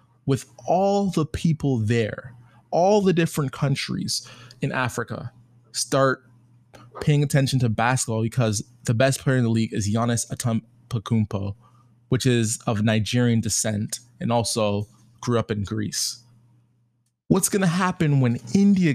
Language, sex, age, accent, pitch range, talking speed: English, male, 20-39, American, 115-135 Hz, 135 wpm